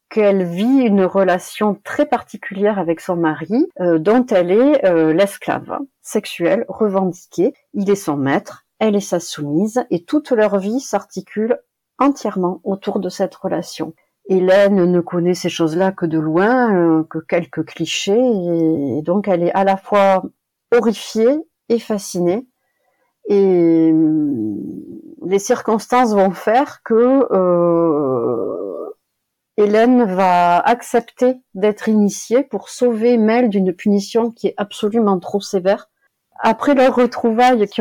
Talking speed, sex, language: 135 wpm, female, French